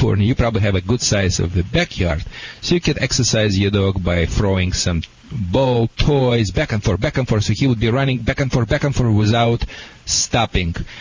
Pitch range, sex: 95-125 Hz, male